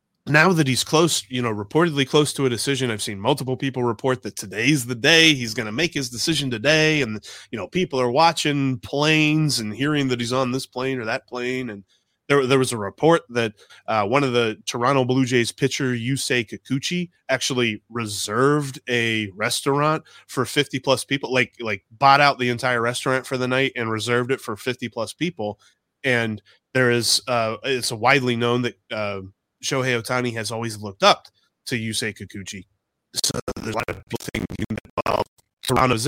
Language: English